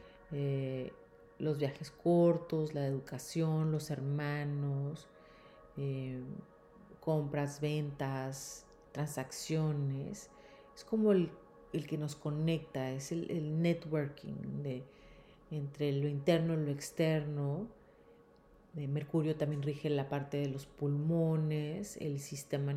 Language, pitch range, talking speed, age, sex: Spanish, 140-165 Hz, 105 wpm, 40-59, female